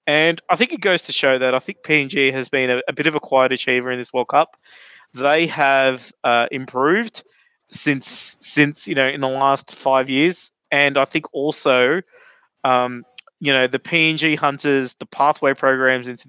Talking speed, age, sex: 190 wpm, 20-39, male